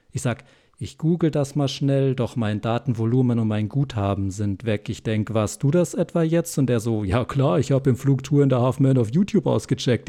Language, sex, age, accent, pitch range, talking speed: German, male, 50-69, German, 110-145 Hz, 220 wpm